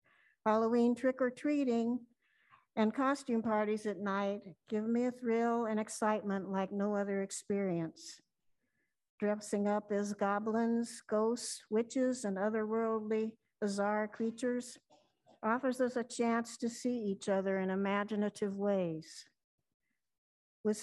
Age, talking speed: 60-79, 110 wpm